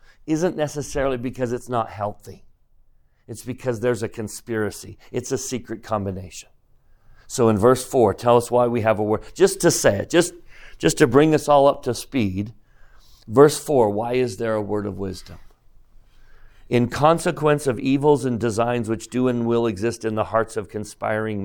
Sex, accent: male, American